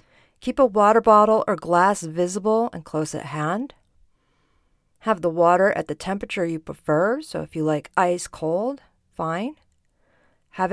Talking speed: 150 wpm